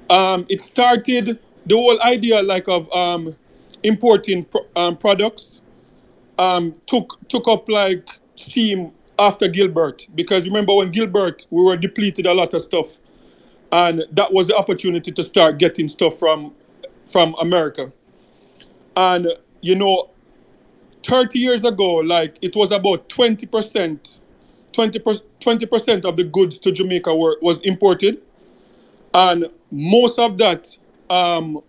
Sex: male